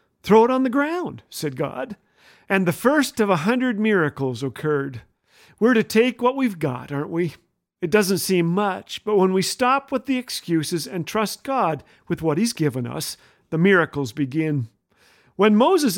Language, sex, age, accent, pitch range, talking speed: English, male, 50-69, American, 170-245 Hz, 175 wpm